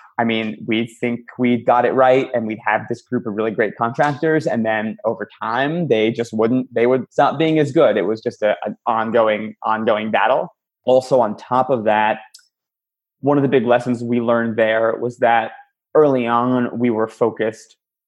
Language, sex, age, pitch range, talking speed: English, male, 20-39, 115-145 Hz, 195 wpm